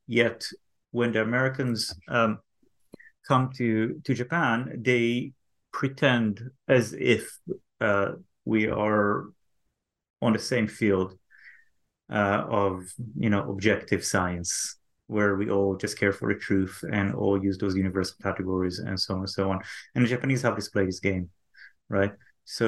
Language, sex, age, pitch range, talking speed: English, male, 30-49, 100-115 Hz, 145 wpm